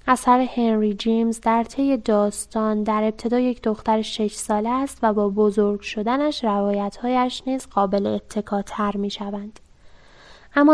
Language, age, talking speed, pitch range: Persian, 10-29, 140 wpm, 210-240 Hz